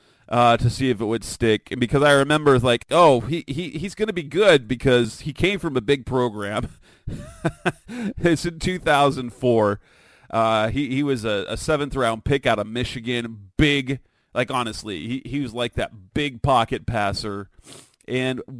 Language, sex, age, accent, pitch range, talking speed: English, male, 30-49, American, 110-135 Hz, 170 wpm